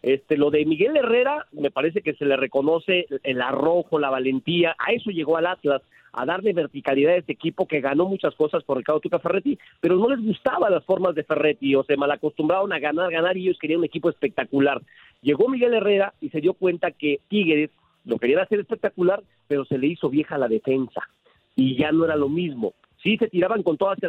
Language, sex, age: Spanish, male, 40-59